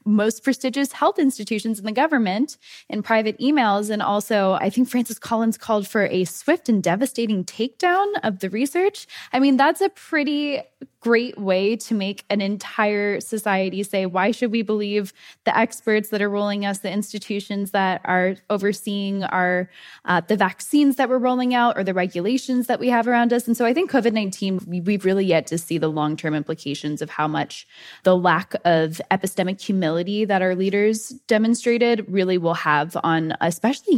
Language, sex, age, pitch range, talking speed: English, female, 10-29, 180-240 Hz, 175 wpm